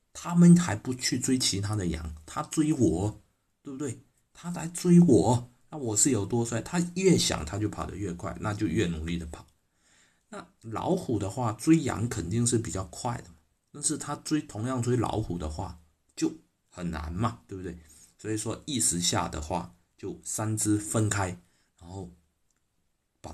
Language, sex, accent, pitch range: Chinese, male, native, 85-120 Hz